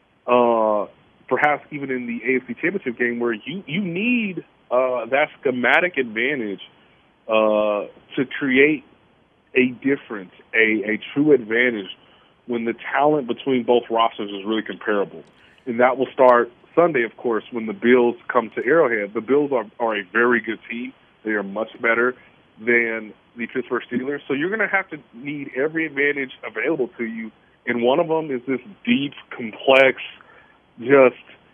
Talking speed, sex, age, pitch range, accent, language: 160 wpm, male, 30-49, 115-150 Hz, American, English